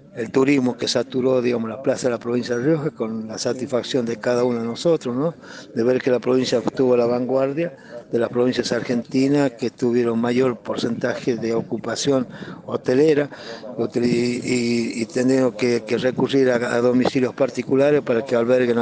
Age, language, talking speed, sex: 50-69, Spanish, 170 wpm, male